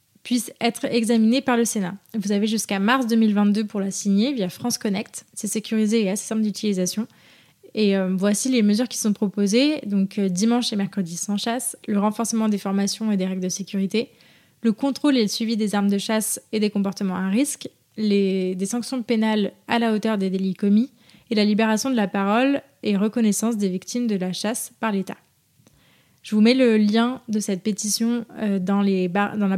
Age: 20-39